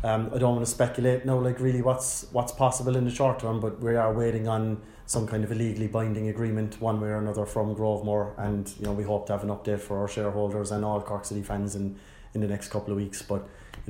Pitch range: 105-125 Hz